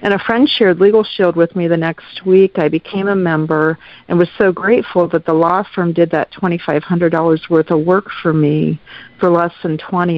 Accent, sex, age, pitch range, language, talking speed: American, female, 50-69, 155-180 Hz, English, 205 wpm